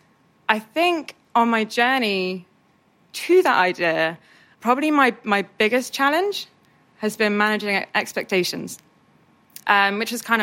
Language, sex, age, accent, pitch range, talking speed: English, female, 20-39, British, 185-245 Hz, 120 wpm